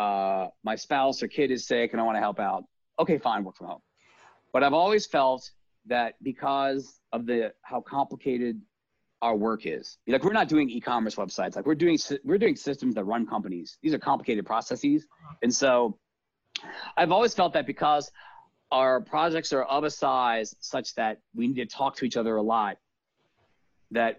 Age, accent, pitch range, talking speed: 30-49, American, 115-150 Hz, 185 wpm